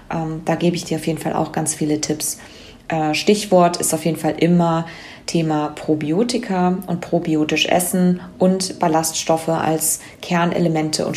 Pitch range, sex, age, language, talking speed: 160-180 Hz, female, 20-39, English, 145 wpm